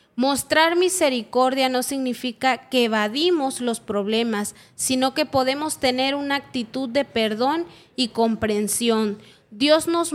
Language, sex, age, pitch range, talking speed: Spanish, female, 30-49, 225-280 Hz, 120 wpm